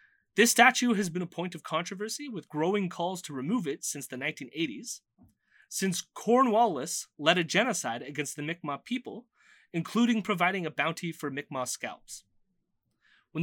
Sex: male